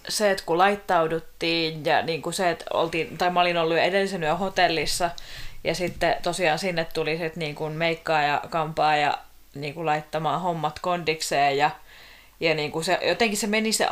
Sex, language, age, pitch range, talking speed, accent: female, Finnish, 20-39, 155-185 Hz, 175 wpm, native